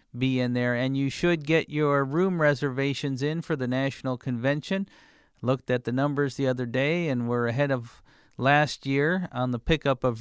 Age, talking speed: 50-69, 190 wpm